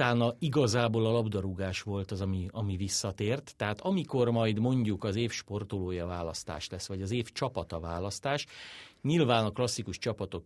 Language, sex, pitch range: Hungarian, male, 95-120 Hz